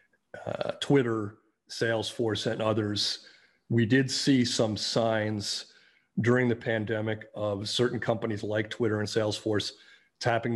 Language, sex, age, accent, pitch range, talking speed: English, male, 40-59, American, 110-120 Hz, 120 wpm